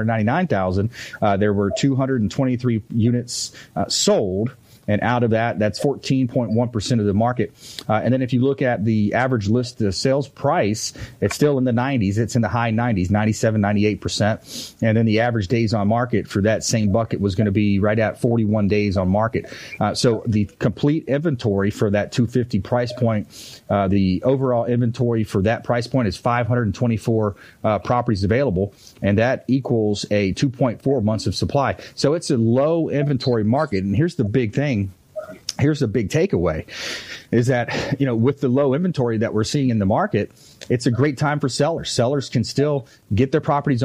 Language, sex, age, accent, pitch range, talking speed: English, male, 30-49, American, 105-130 Hz, 190 wpm